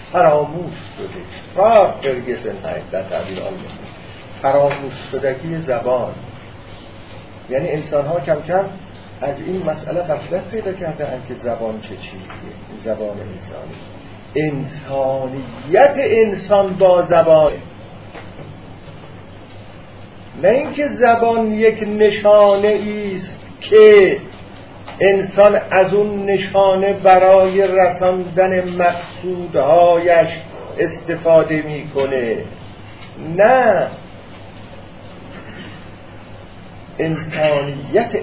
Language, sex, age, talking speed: Persian, male, 50-69, 70 wpm